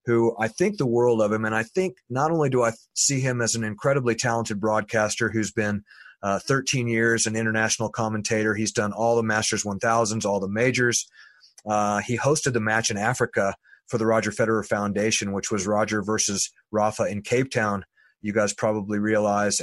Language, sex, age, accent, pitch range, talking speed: English, male, 30-49, American, 105-120 Hz, 190 wpm